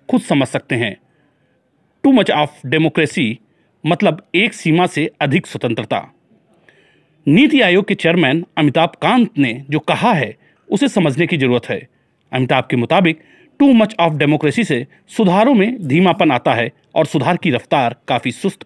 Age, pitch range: 40-59, 145-195 Hz